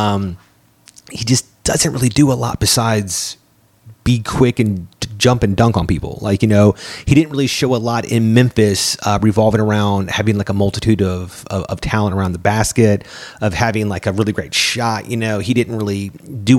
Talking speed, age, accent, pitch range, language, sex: 200 wpm, 30-49, American, 95-120 Hz, English, male